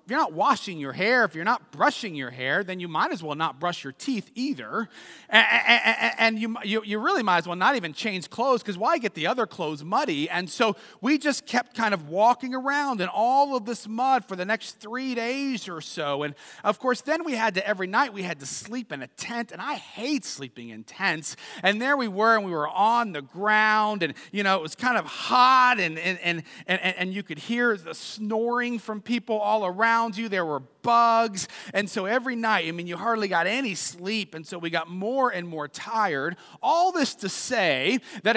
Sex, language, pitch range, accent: male, English, 175-245 Hz, American